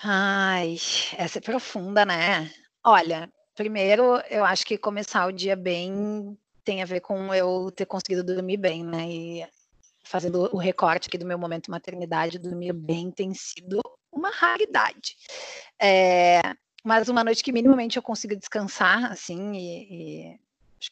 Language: Portuguese